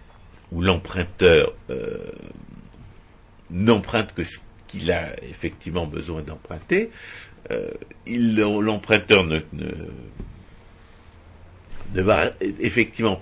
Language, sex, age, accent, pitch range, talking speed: French, male, 60-79, French, 90-135 Hz, 75 wpm